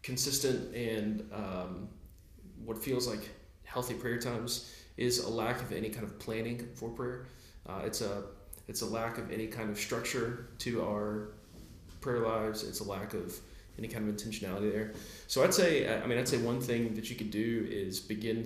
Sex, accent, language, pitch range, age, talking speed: male, American, English, 105-120 Hz, 20-39, 190 wpm